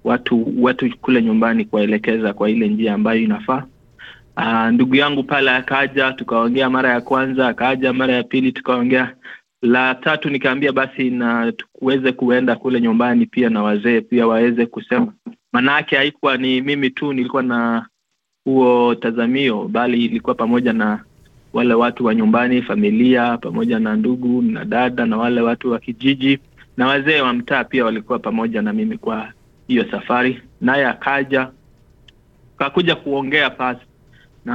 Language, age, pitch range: Swahili, 30-49, 115-135 Hz